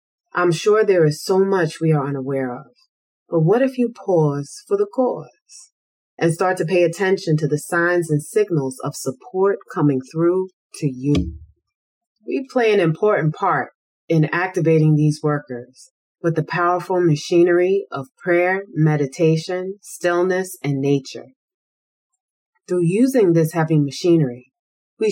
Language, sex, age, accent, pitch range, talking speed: English, female, 30-49, American, 145-195 Hz, 140 wpm